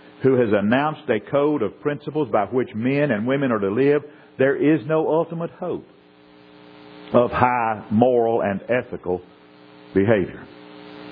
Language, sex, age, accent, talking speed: English, male, 50-69, American, 140 wpm